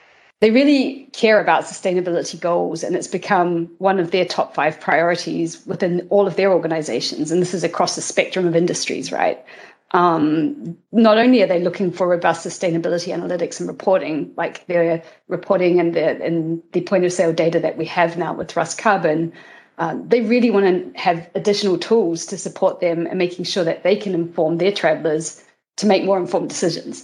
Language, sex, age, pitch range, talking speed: English, female, 30-49, 165-195 Hz, 185 wpm